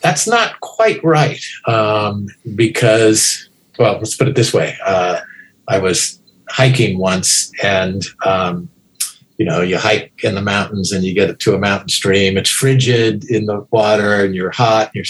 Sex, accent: male, American